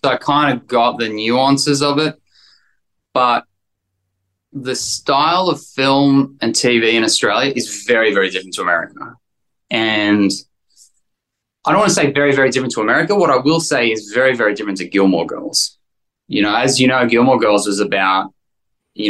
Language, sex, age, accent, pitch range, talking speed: English, male, 10-29, Australian, 100-130 Hz, 175 wpm